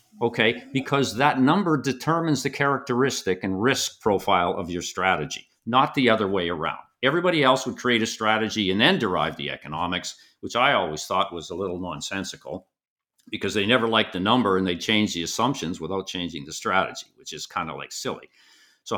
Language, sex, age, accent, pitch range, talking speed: English, male, 50-69, American, 100-135 Hz, 185 wpm